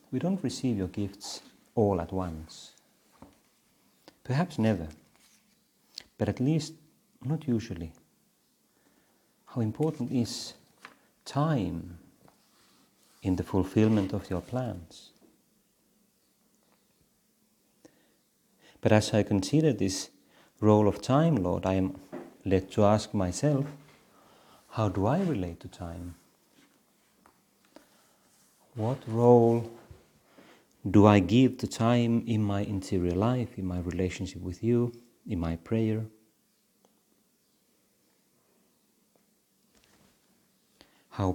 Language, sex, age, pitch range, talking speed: Finnish, male, 40-59, 90-115 Hz, 95 wpm